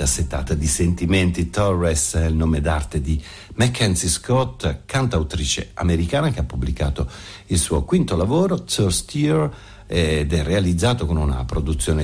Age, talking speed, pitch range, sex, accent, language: 50-69, 135 wpm, 75-95 Hz, male, native, Italian